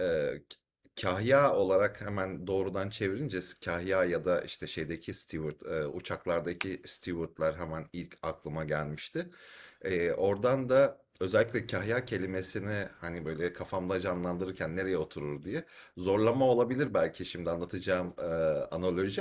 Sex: male